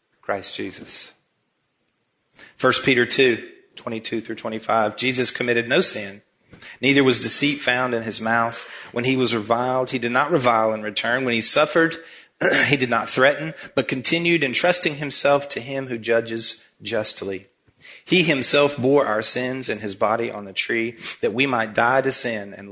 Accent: American